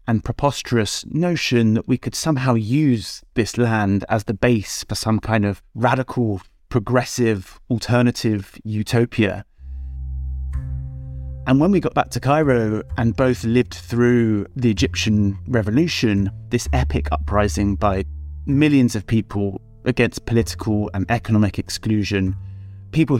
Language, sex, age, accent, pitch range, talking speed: English, male, 30-49, British, 100-120 Hz, 125 wpm